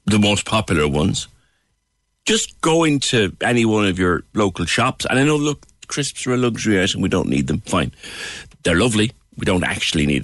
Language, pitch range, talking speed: English, 85-115 Hz, 195 wpm